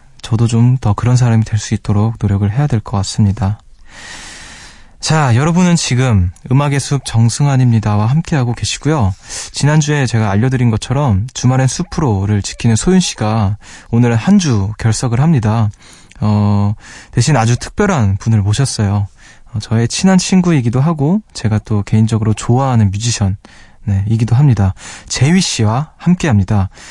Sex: male